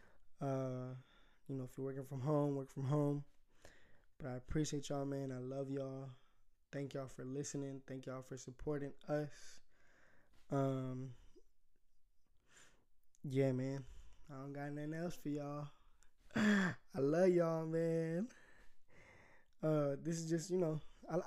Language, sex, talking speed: English, male, 140 wpm